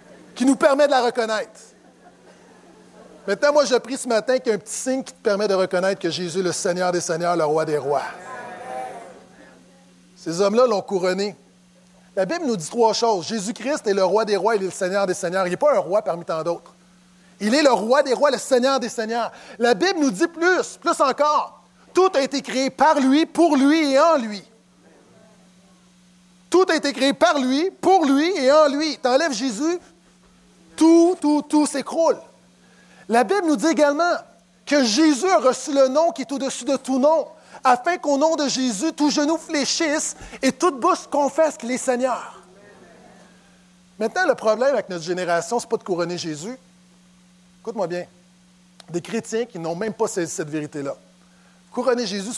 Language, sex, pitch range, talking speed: French, male, 185-285 Hz, 190 wpm